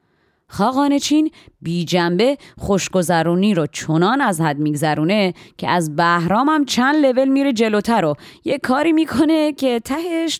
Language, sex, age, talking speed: Persian, female, 30-49, 140 wpm